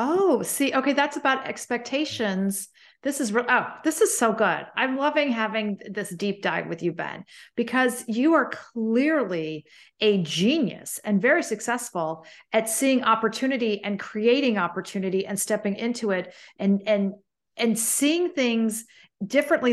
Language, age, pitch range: English, 40-59, 205-250 Hz